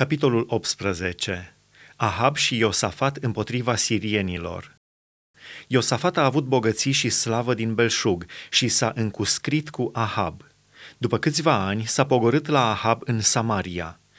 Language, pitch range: Romanian, 110-140 Hz